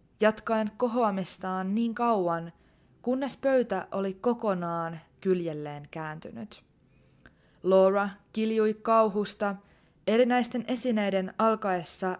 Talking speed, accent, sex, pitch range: 80 wpm, native, female, 180-230 Hz